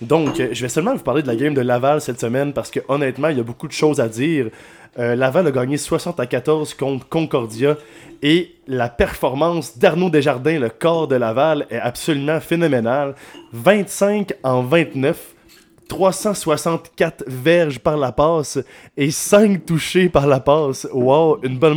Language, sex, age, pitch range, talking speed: French, male, 20-39, 125-150 Hz, 170 wpm